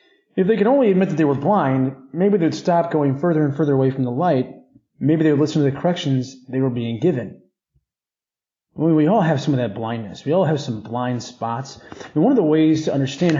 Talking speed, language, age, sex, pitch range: 225 wpm, English, 30-49, male, 140-195 Hz